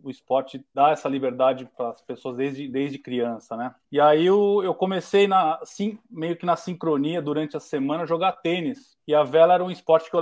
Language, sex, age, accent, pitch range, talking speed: Portuguese, male, 20-39, Brazilian, 140-175 Hz, 205 wpm